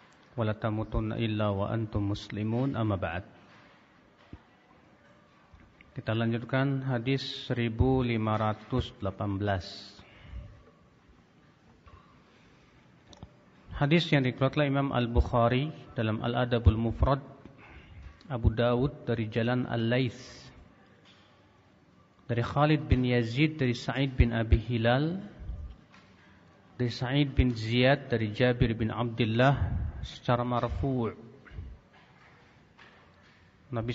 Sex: male